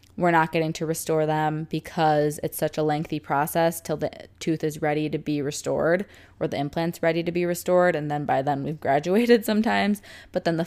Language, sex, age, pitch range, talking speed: English, female, 20-39, 155-185 Hz, 210 wpm